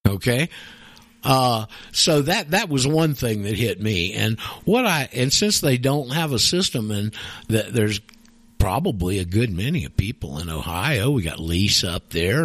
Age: 60-79